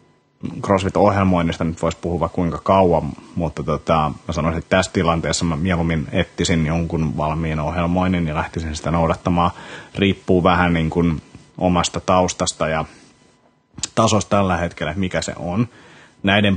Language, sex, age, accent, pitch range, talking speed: Finnish, male, 30-49, native, 80-90 Hz, 125 wpm